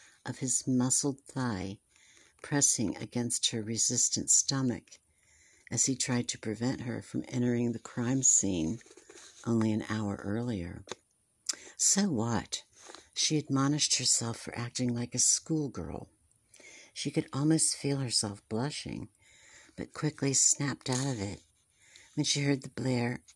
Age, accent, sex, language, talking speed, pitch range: 60-79, American, female, English, 130 wpm, 110-135 Hz